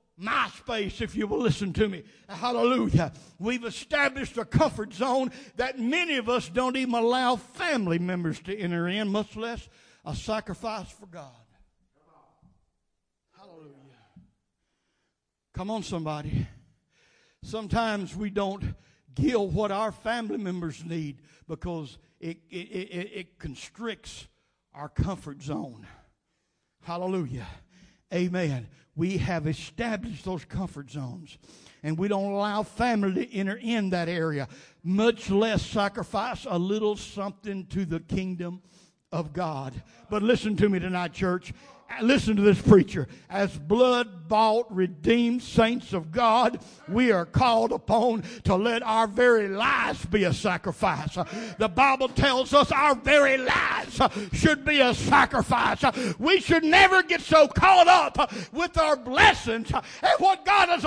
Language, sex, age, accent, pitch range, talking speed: English, male, 60-79, American, 180-275 Hz, 135 wpm